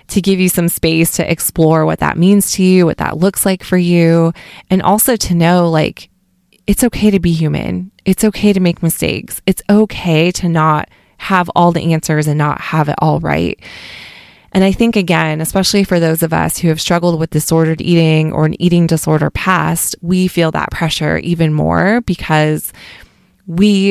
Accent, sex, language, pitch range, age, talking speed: American, female, English, 155-185 Hz, 20-39, 190 wpm